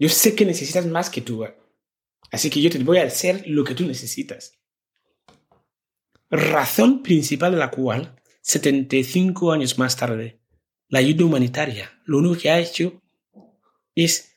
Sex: male